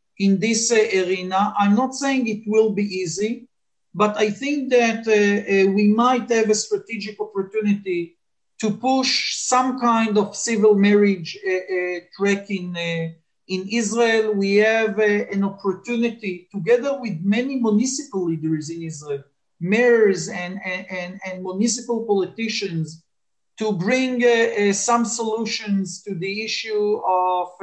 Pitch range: 195-230 Hz